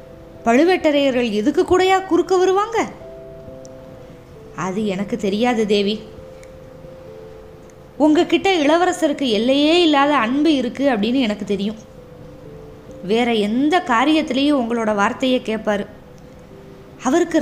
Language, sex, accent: Tamil, female, native